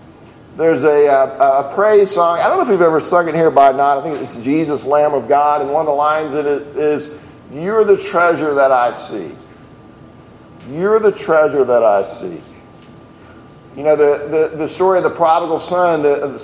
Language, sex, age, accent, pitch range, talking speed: English, male, 40-59, American, 140-175 Hz, 205 wpm